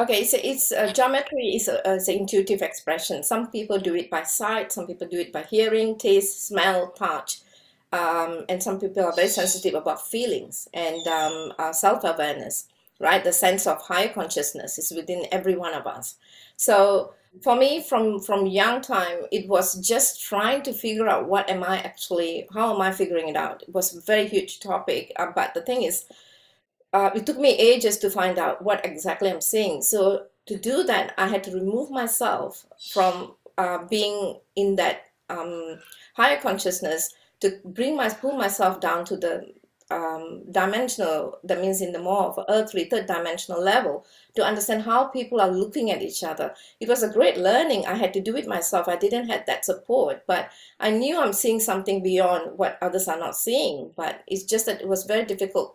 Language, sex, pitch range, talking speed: English, female, 185-225 Hz, 190 wpm